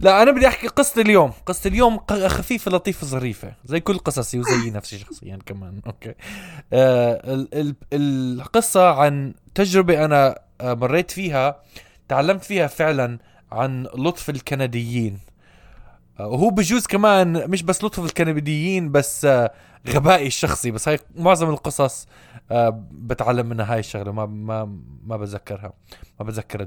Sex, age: male, 20-39